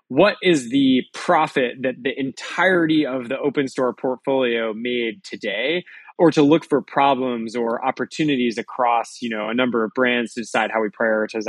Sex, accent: male, American